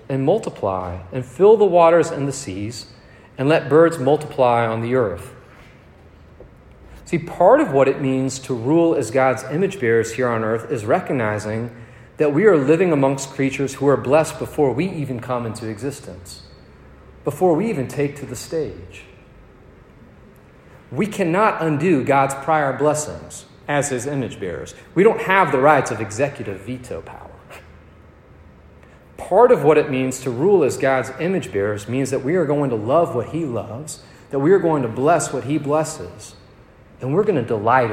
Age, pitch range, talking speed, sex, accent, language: 40-59, 110-150 Hz, 170 wpm, male, American, English